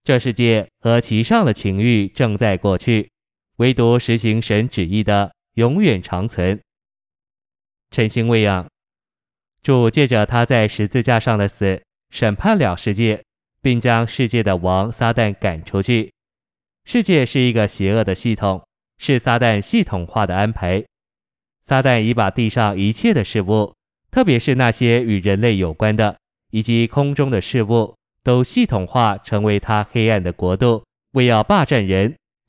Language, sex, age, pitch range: Chinese, male, 20-39, 105-125 Hz